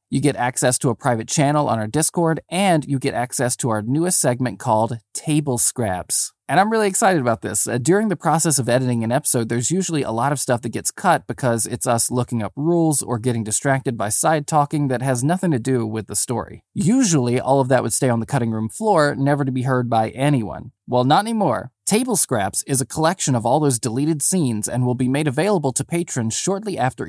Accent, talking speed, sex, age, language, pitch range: American, 225 wpm, male, 20-39, English, 120-155 Hz